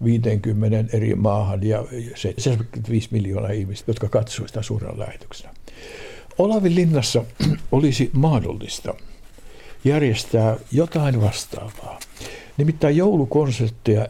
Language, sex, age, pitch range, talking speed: Finnish, male, 60-79, 110-130 Hz, 90 wpm